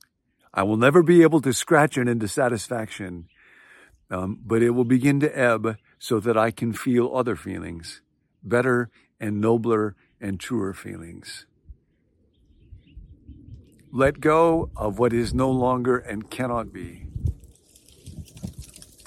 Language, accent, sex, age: English, American, male, 50-69